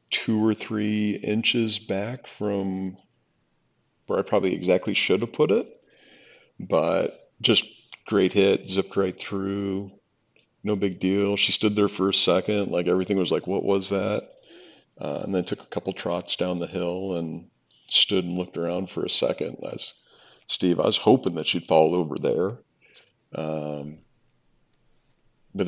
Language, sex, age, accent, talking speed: English, male, 50-69, American, 155 wpm